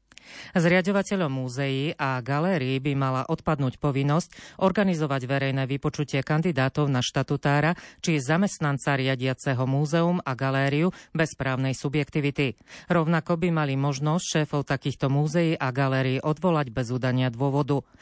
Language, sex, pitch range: Slovak, female, 135-160 Hz